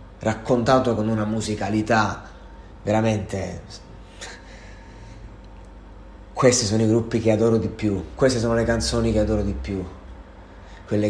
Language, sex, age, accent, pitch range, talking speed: Italian, male, 30-49, native, 90-110 Hz, 120 wpm